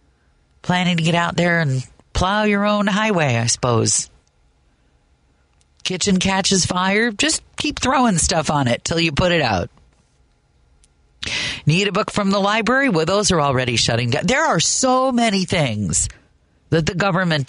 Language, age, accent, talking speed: English, 40-59, American, 160 wpm